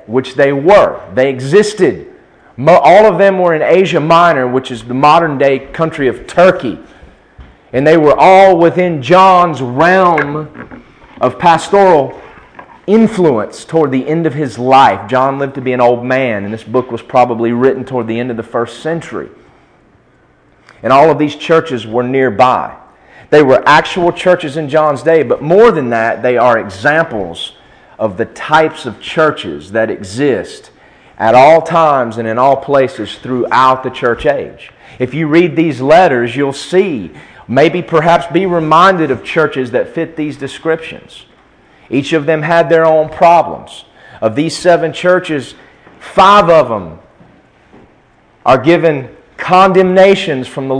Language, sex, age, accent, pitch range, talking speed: English, male, 30-49, American, 130-165 Hz, 155 wpm